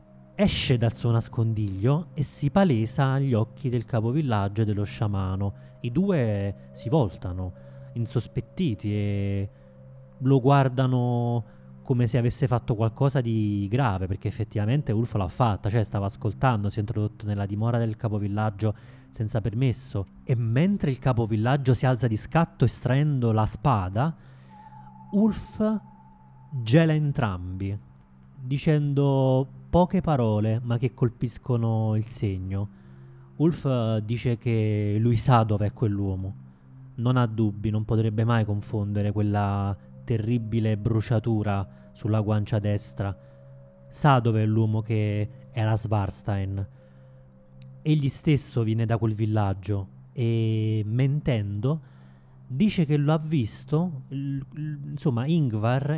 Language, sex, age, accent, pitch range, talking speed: Italian, male, 30-49, native, 105-130 Hz, 120 wpm